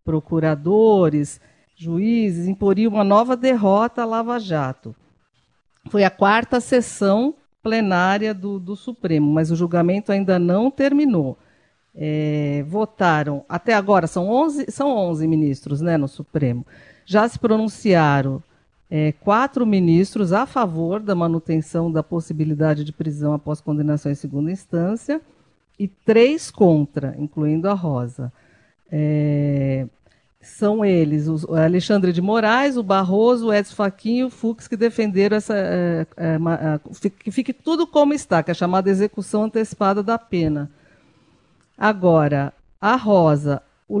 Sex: female